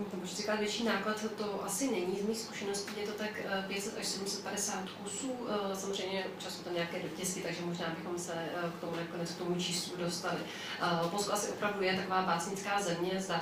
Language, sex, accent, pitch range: Czech, female, native, 175-190 Hz